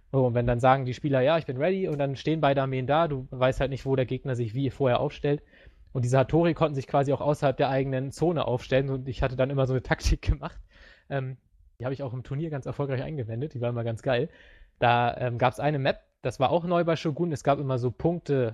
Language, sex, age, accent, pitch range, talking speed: English, male, 20-39, German, 130-155 Hz, 260 wpm